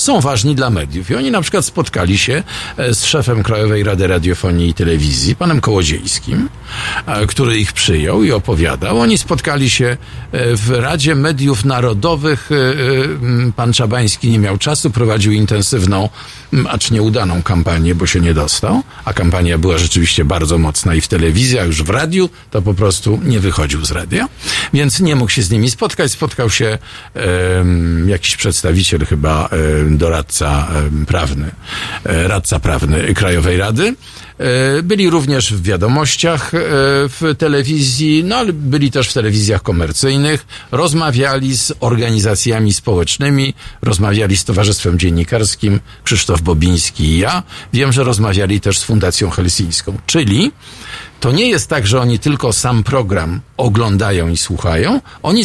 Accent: native